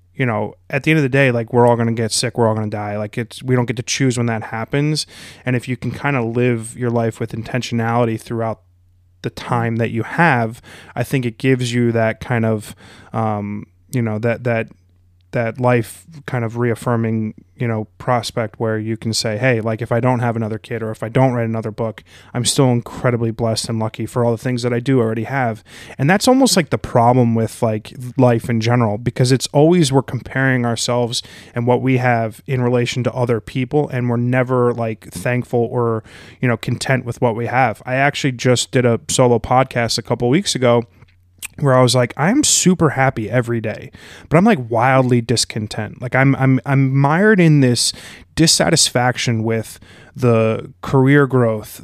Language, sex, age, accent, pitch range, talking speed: English, male, 20-39, American, 115-130 Hz, 205 wpm